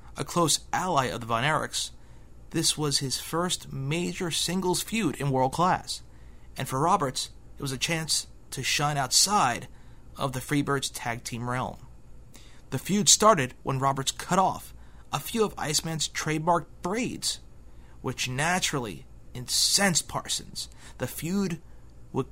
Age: 30-49